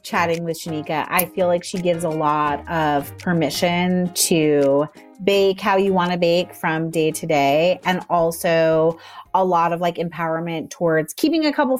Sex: female